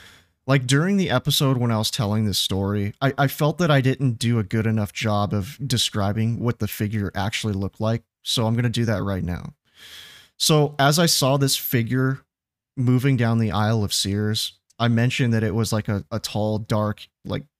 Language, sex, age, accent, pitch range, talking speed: English, male, 30-49, American, 105-135 Hz, 205 wpm